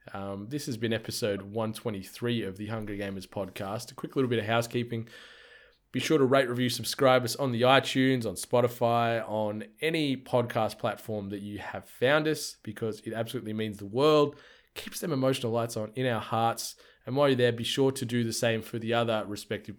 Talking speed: 200 wpm